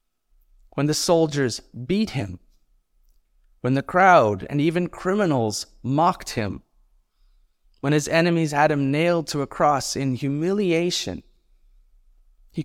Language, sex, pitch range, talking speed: English, male, 90-150 Hz, 120 wpm